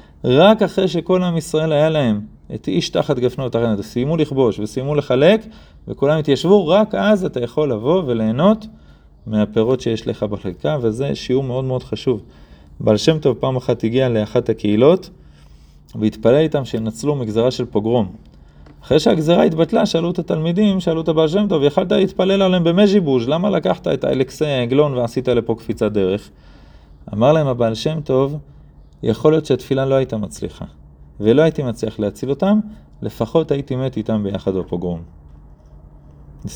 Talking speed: 145 wpm